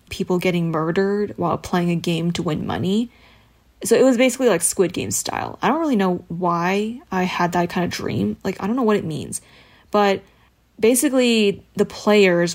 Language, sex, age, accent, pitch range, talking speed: English, female, 20-39, American, 180-205 Hz, 190 wpm